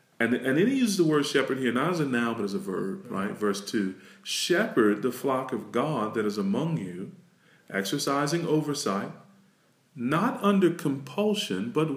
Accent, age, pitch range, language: American, 40-59, 120-175 Hz, English